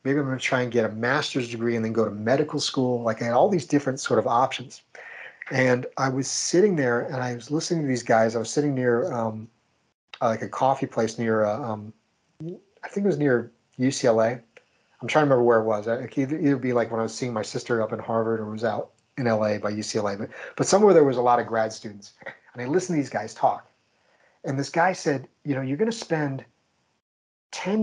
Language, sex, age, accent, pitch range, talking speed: English, male, 40-59, American, 115-150 Hz, 240 wpm